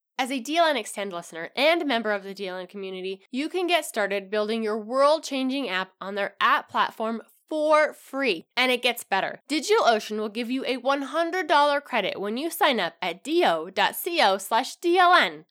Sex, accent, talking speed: female, American, 165 wpm